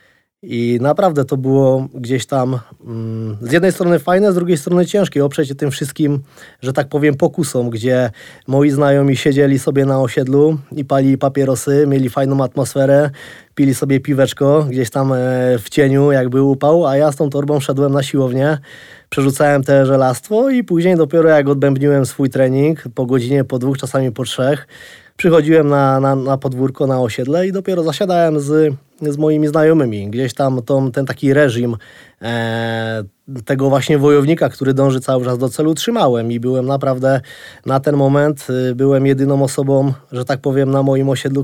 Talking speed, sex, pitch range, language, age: 170 wpm, male, 130-145 Hz, Polish, 20-39